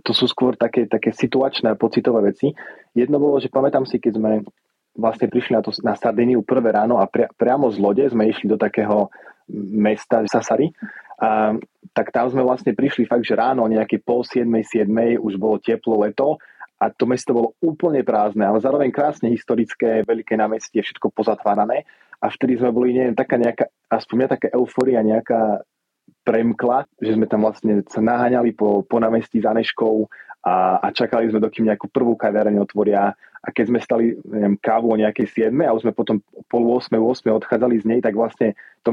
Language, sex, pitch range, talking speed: Slovak, male, 110-120 Hz, 185 wpm